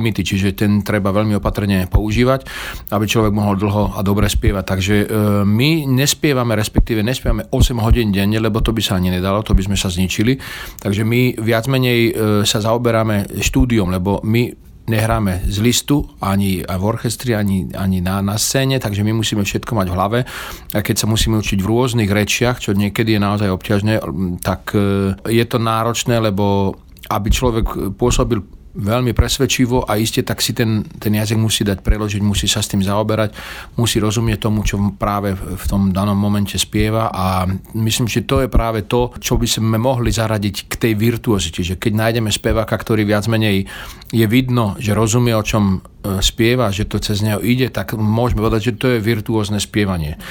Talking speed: 180 wpm